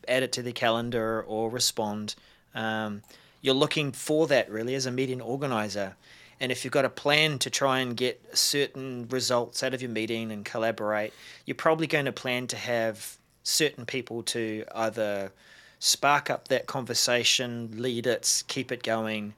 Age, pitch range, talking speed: 30-49, 115-135 Hz, 170 wpm